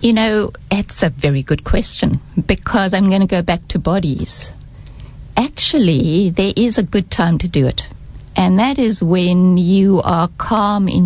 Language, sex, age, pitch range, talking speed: English, female, 60-79, 175-220 Hz, 175 wpm